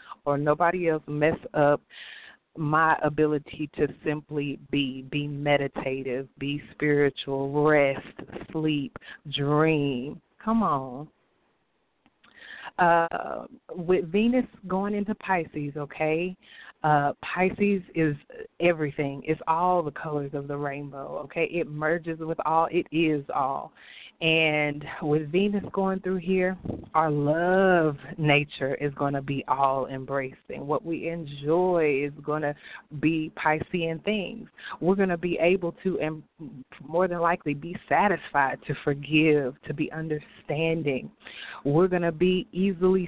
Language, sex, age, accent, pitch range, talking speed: English, female, 30-49, American, 145-175 Hz, 125 wpm